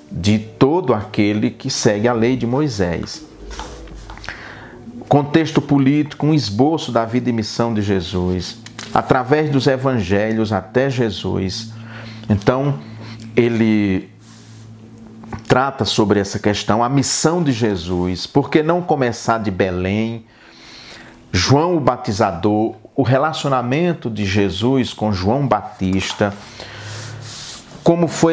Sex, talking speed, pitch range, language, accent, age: male, 110 wpm, 105-130 Hz, Portuguese, Brazilian, 50-69